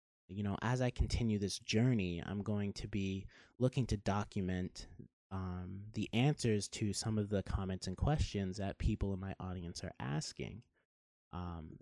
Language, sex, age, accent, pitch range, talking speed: English, male, 30-49, American, 90-110 Hz, 160 wpm